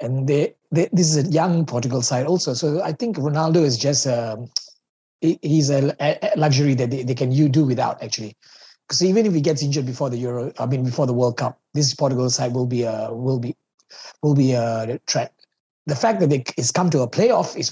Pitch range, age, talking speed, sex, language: 130-165 Hz, 30-49, 220 wpm, male, English